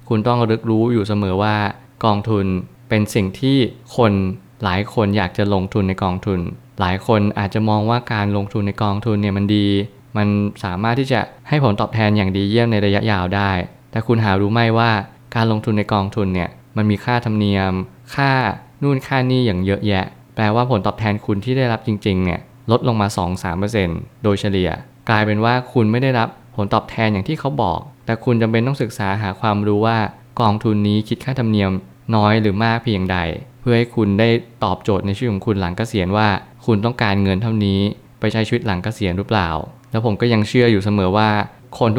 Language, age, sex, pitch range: Thai, 20-39, male, 100-120 Hz